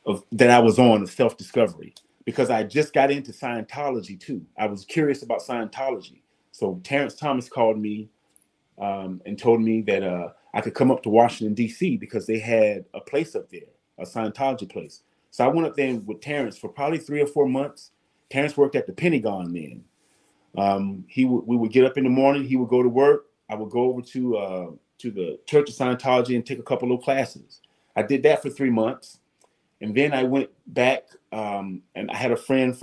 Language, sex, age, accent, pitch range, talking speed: English, male, 30-49, American, 110-135 Hz, 210 wpm